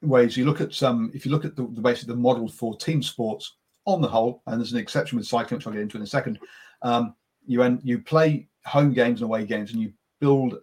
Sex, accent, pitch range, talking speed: male, British, 115-140 Hz, 265 wpm